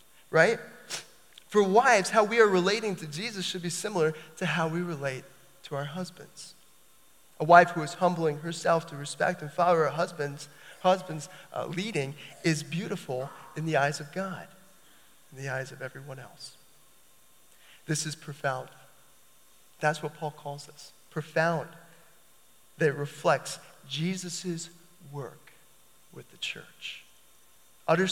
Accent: American